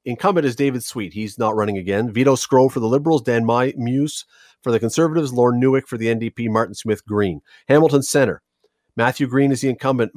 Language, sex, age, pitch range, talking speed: English, male, 40-59, 115-145 Hz, 200 wpm